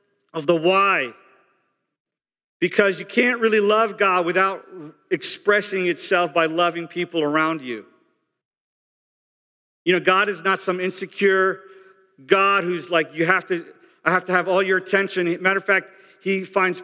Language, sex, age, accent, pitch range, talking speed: English, male, 50-69, American, 170-205 Hz, 150 wpm